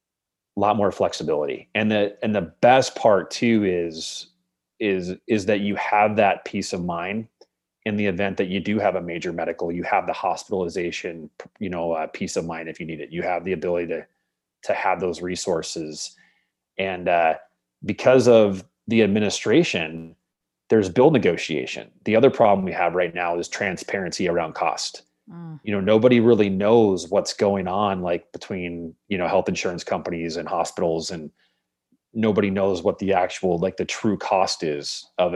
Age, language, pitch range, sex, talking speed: 30-49, English, 85-105 Hz, male, 175 wpm